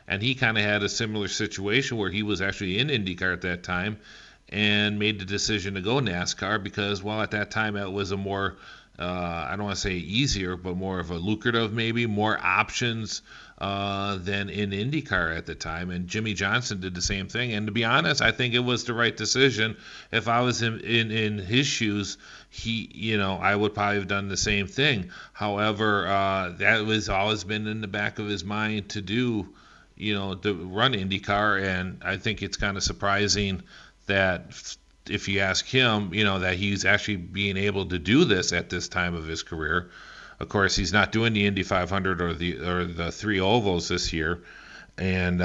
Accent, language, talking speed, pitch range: American, English, 205 wpm, 95-110 Hz